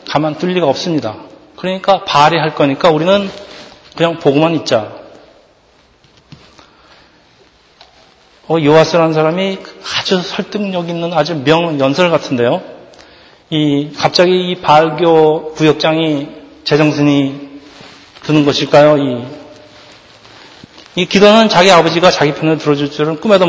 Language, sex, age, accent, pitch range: Korean, male, 40-59, native, 145-185 Hz